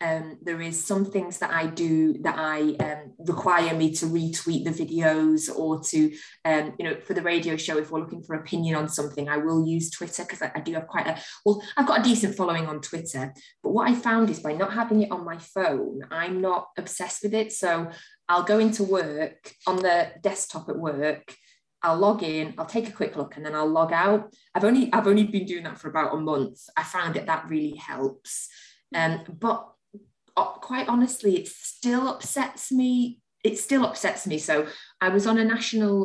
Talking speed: 215 wpm